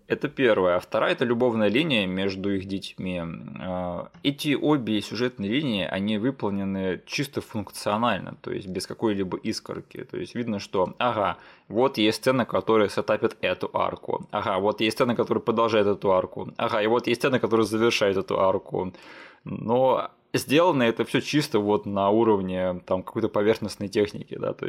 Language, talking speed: Russian, 160 wpm